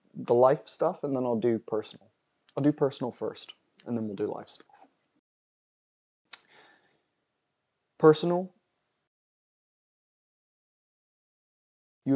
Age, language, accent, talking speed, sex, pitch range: 20-39, English, American, 100 wpm, male, 125-155 Hz